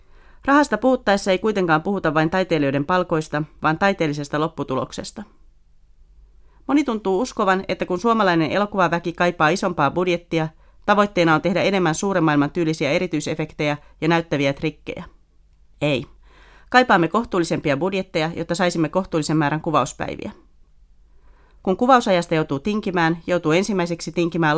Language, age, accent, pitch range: Finnish, 30-49, native, 150-185 Hz